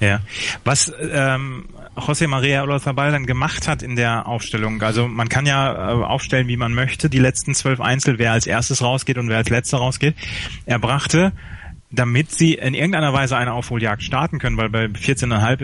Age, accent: 30-49, German